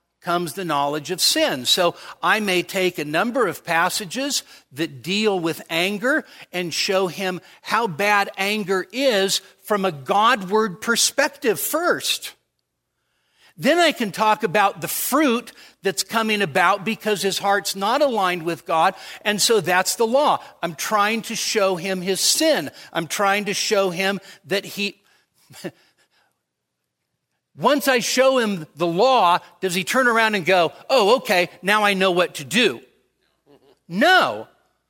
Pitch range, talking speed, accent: 180-225 Hz, 150 wpm, American